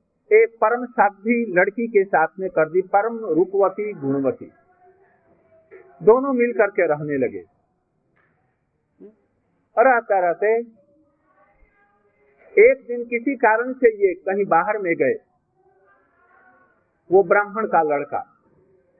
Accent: native